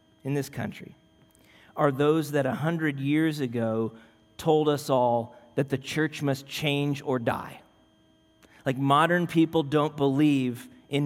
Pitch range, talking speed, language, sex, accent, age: 130-170 Hz, 140 wpm, English, male, American, 40-59